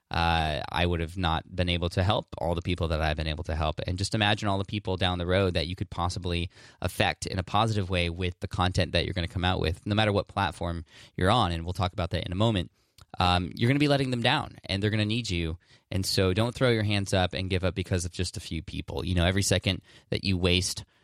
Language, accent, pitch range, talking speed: English, American, 85-105 Hz, 275 wpm